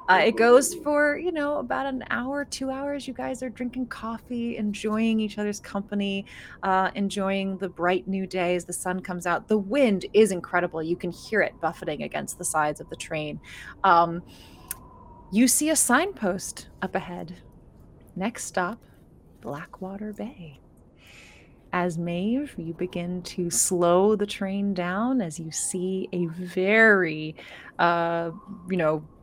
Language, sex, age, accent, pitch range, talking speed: English, female, 20-39, American, 180-225 Hz, 150 wpm